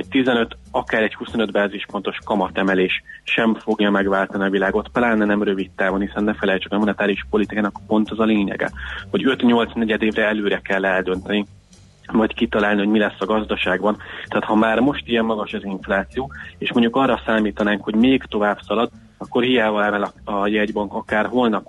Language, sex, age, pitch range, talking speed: Hungarian, male, 30-49, 100-110 Hz, 175 wpm